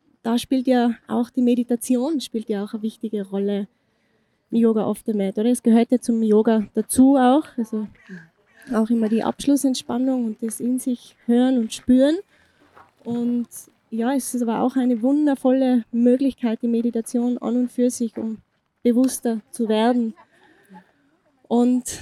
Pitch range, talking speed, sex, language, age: 230-260 Hz, 155 wpm, female, German, 20-39